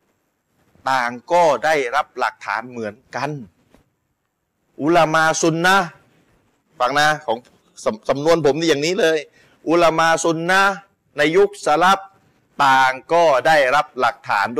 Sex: male